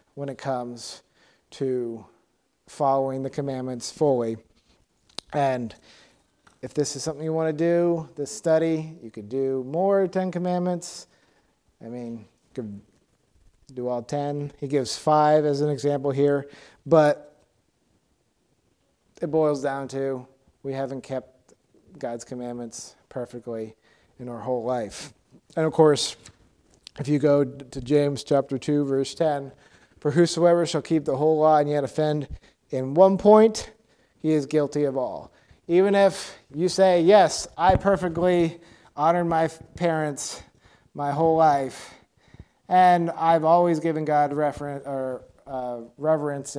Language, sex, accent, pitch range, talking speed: English, male, American, 125-160 Hz, 135 wpm